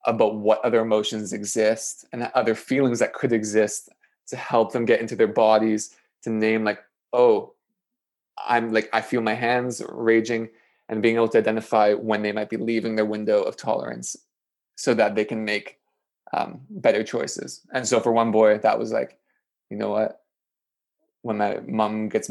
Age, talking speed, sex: 20-39, 180 wpm, male